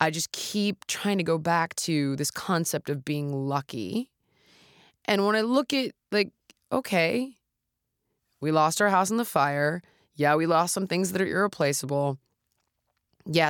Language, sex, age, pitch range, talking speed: English, female, 20-39, 145-180 Hz, 160 wpm